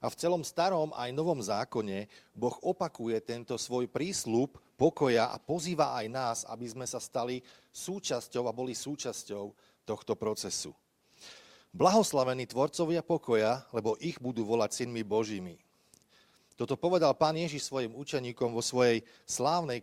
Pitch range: 115-145 Hz